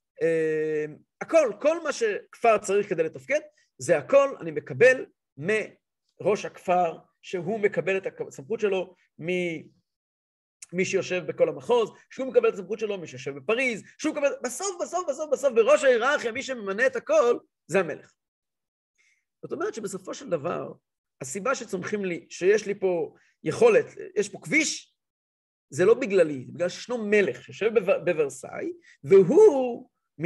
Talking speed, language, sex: 145 wpm, Hebrew, male